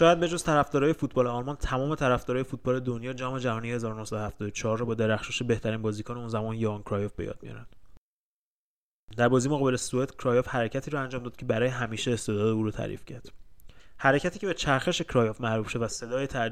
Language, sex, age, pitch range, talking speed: Persian, male, 30-49, 110-130 Hz, 175 wpm